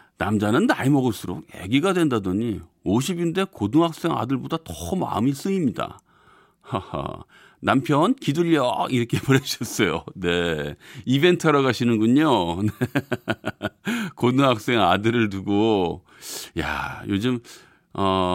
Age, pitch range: 40-59, 100-140 Hz